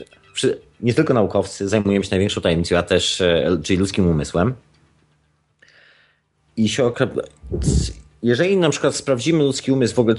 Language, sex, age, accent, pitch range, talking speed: Polish, male, 30-49, native, 100-125 Hz, 135 wpm